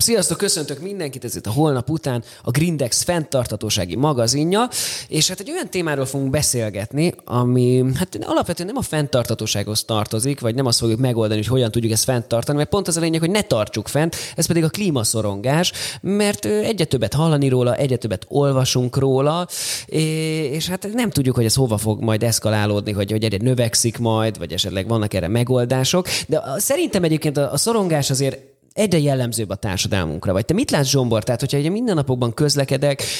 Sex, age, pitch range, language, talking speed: male, 20-39, 120-160 Hz, Hungarian, 175 wpm